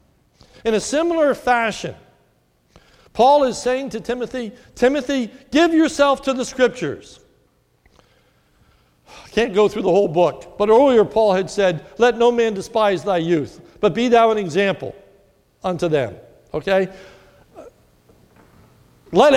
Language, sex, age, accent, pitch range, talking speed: English, male, 60-79, American, 180-260 Hz, 130 wpm